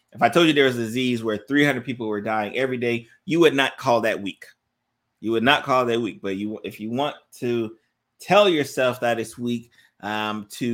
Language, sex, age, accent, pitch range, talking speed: English, male, 30-49, American, 110-145 Hz, 230 wpm